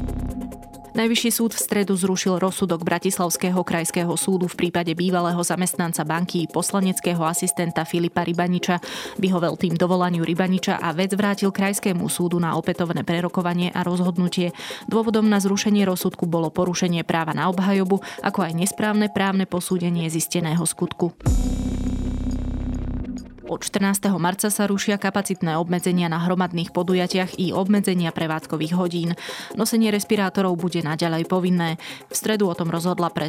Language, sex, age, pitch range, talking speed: Slovak, female, 20-39, 165-190 Hz, 130 wpm